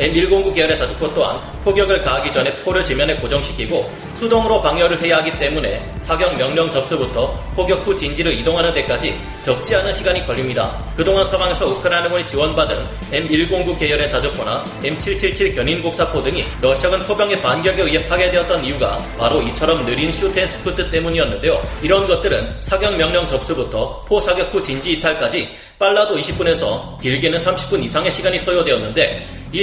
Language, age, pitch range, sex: Korean, 30-49, 155-195 Hz, male